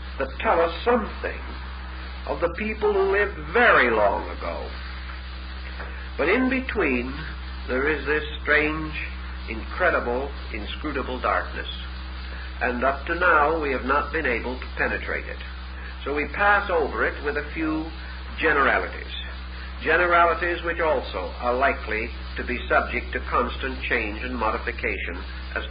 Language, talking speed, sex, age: English, 135 wpm, male, 60-79